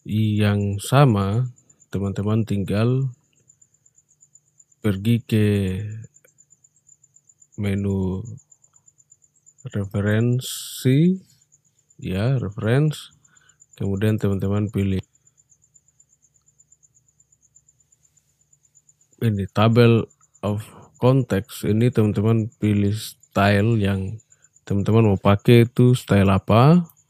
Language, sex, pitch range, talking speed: Indonesian, male, 110-135 Hz, 60 wpm